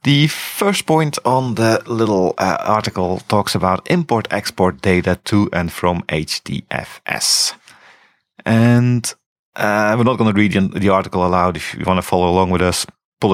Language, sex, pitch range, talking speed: English, male, 90-115 Hz, 155 wpm